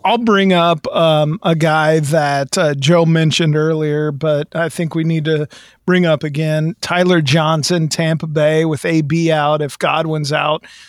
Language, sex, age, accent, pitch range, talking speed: English, male, 40-59, American, 155-175 Hz, 165 wpm